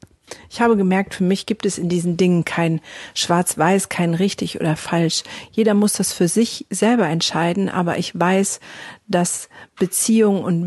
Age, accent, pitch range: 50-69, German, 170-200 Hz